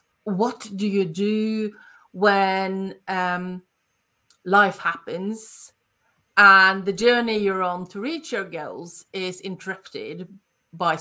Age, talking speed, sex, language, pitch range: 30-49, 110 wpm, female, English, 185-230 Hz